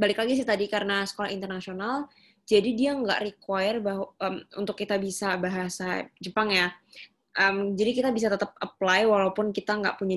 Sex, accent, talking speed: female, native, 170 wpm